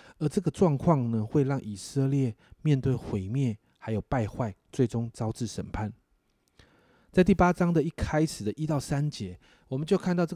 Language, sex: Chinese, male